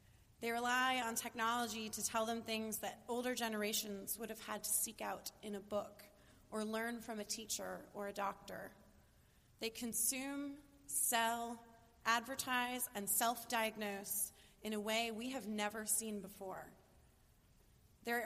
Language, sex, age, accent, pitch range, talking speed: English, female, 30-49, American, 210-240 Hz, 140 wpm